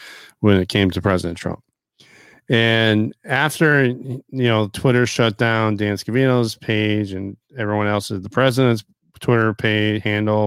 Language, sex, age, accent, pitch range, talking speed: English, male, 40-59, American, 100-115 Hz, 140 wpm